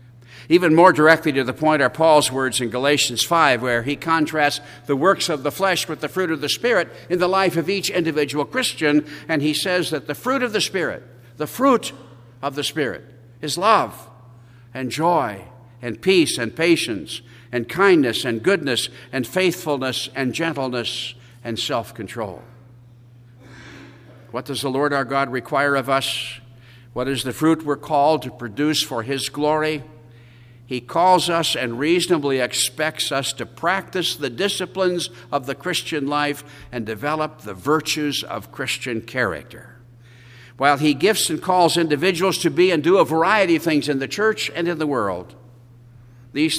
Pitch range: 120-160 Hz